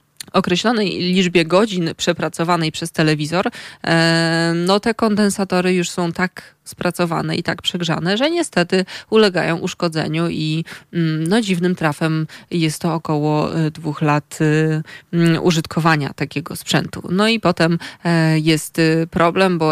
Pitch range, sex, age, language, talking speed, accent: 155-185 Hz, female, 20-39, Polish, 115 wpm, native